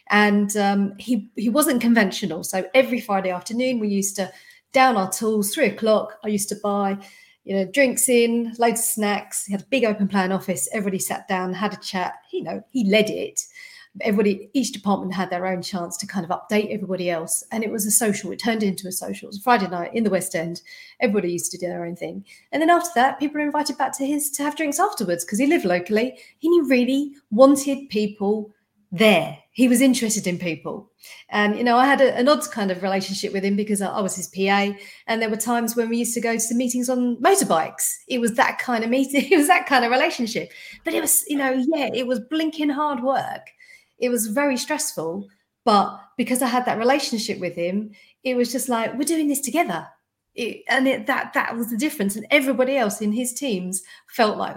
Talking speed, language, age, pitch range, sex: 225 wpm, English, 40-59, 200-265 Hz, female